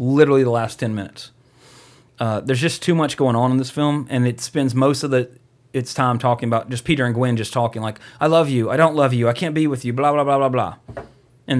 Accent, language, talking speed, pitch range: American, English, 260 wpm, 120-140 Hz